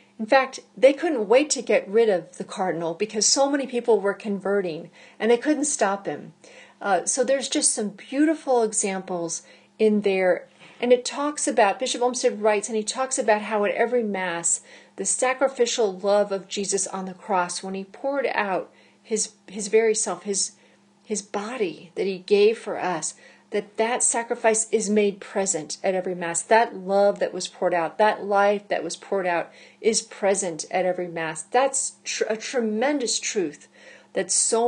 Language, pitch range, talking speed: English, 190-245 Hz, 175 wpm